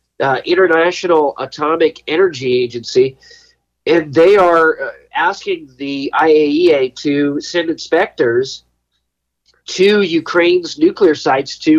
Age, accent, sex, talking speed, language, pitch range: 40-59, American, male, 100 wpm, English, 130-180 Hz